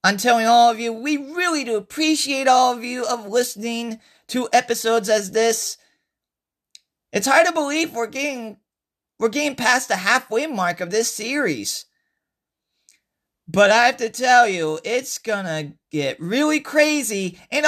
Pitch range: 175-245 Hz